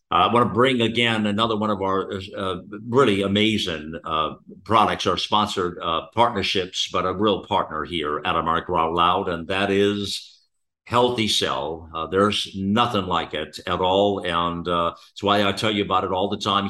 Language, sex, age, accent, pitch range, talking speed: English, male, 50-69, American, 100-120 Hz, 185 wpm